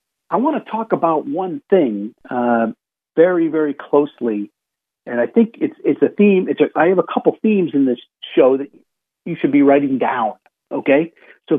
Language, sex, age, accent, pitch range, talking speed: English, male, 50-69, American, 130-200 Hz, 185 wpm